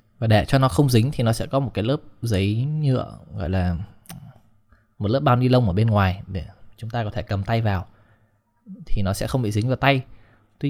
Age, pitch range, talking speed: 20-39, 100-125 Hz, 235 wpm